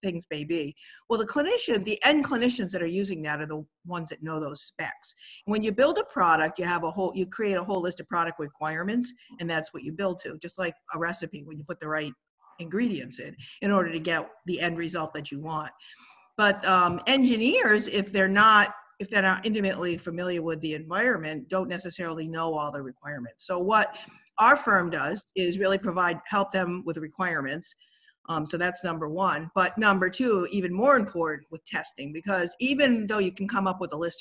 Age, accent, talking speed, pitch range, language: 50-69, American, 210 wpm, 165-210 Hz, English